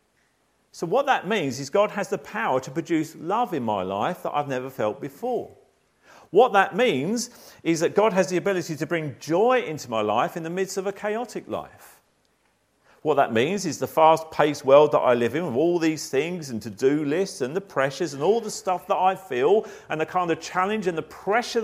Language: English